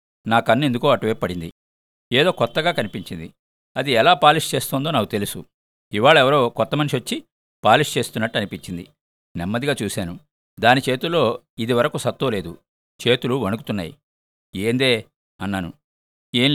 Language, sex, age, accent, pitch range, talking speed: Telugu, male, 50-69, native, 95-130 Hz, 120 wpm